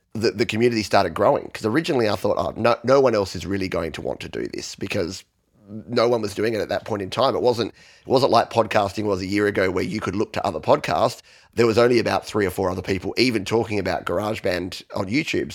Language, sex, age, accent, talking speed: English, male, 30-49, Australian, 250 wpm